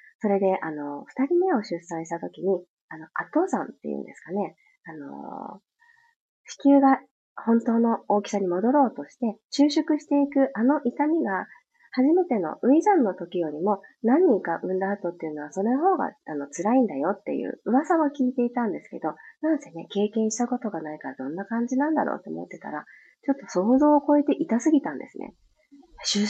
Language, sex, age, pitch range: Japanese, female, 30-49, 190-290 Hz